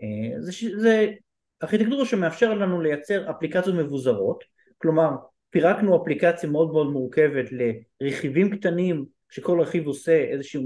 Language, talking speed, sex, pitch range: Hebrew, 115 wpm, male, 135-180 Hz